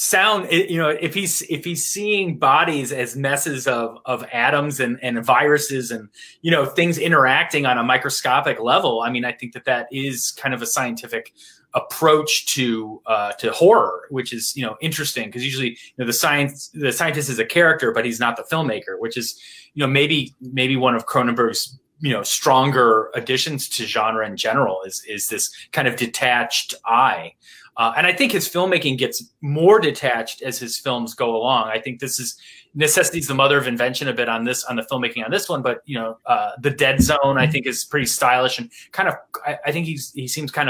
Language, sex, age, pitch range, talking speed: English, male, 30-49, 120-155 Hz, 210 wpm